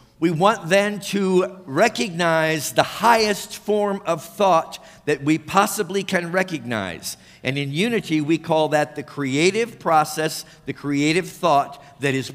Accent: American